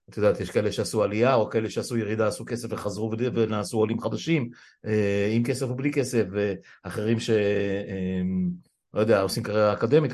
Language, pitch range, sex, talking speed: Hebrew, 110-125 Hz, male, 160 wpm